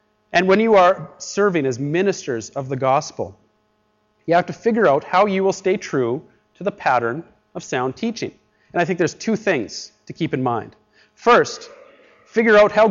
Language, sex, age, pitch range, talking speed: English, male, 30-49, 145-190 Hz, 185 wpm